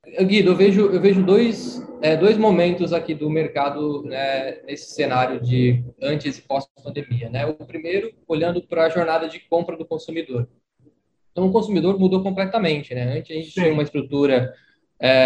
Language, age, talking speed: Portuguese, 20-39, 170 wpm